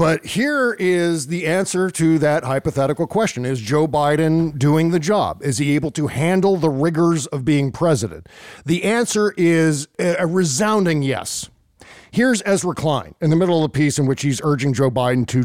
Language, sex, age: English, male, 40-59